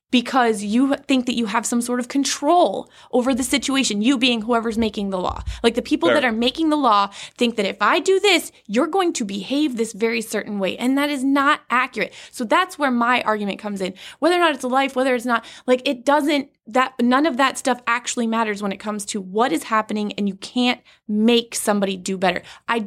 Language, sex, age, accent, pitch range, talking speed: English, female, 20-39, American, 215-260 Hz, 230 wpm